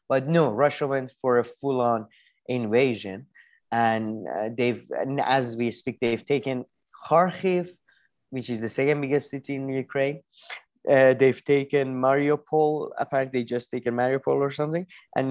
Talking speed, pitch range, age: 150 wpm, 120-155 Hz, 20-39